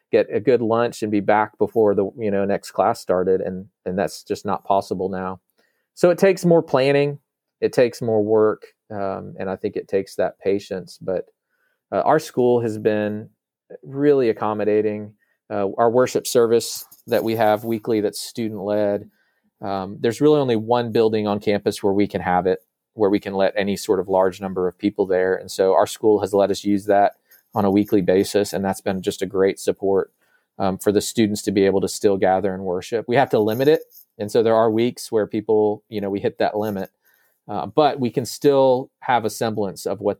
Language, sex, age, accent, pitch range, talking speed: English, male, 30-49, American, 100-115 Hz, 210 wpm